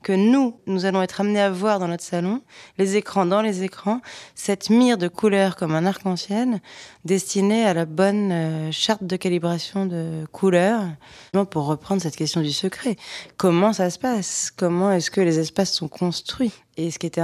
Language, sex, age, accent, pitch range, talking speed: French, female, 20-39, French, 165-195 Hz, 185 wpm